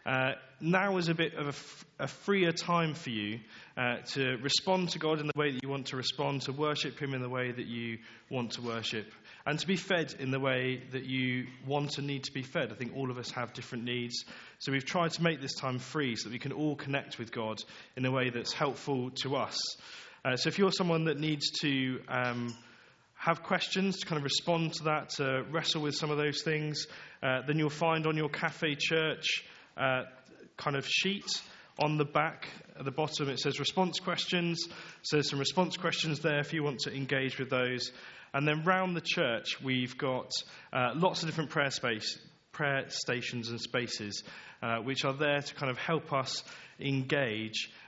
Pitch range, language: 130-160 Hz, English